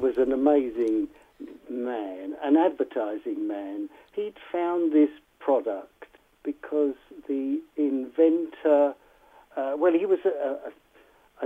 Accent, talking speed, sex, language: British, 105 wpm, male, English